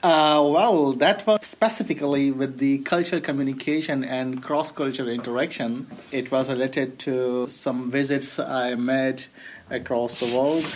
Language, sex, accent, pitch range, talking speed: English, male, Indian, 130-150 Hz, 130 wpm